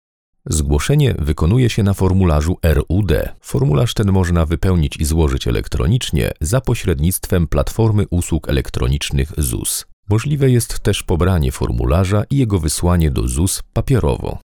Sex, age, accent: male, 40-59, native